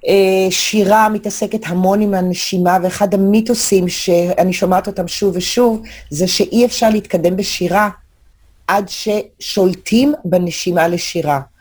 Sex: female